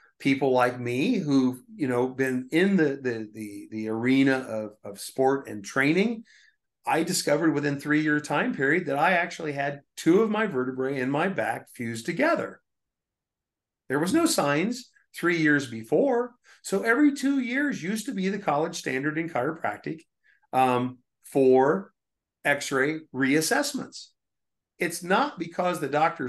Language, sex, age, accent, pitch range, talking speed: English, male, 50-69, American, 135-200 Hz, 140 wpm